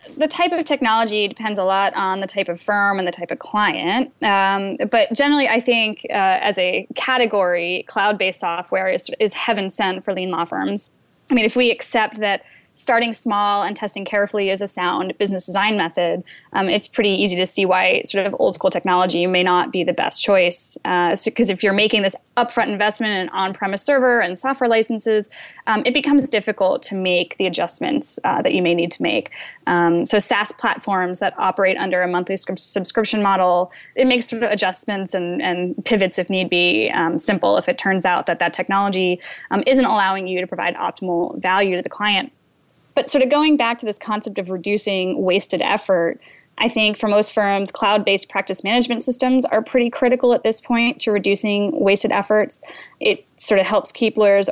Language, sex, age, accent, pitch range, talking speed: English, female, 10-29, American, 185-225 Hz, 195 wpm